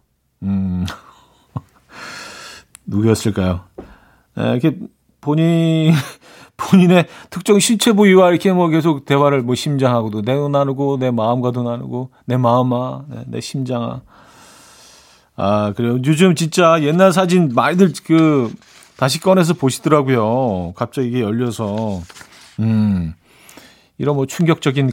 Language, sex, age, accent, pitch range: Korean, male, 40-59, native, 115-155 Hz